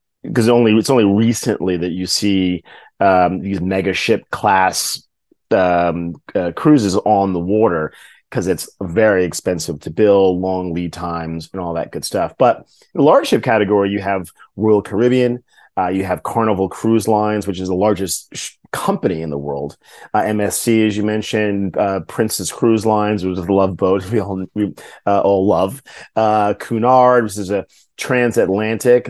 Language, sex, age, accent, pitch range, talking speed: English, male, 30-49, American, 95-110 Hz, 170 wpm